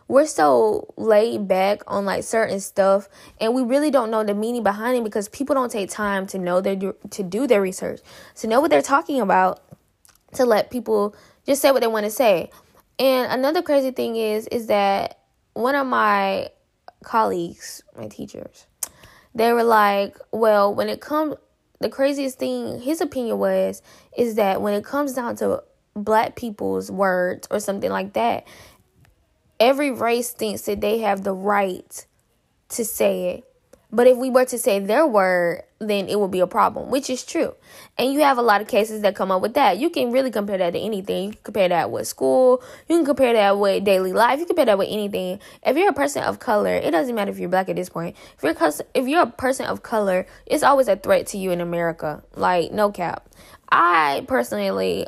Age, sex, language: 10-29, female, English